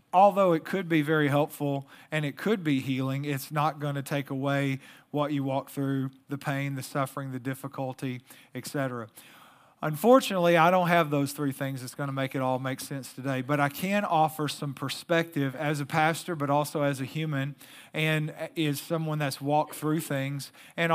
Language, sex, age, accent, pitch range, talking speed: English, male, 40-59, American, 140-155 Hz, 190 wpm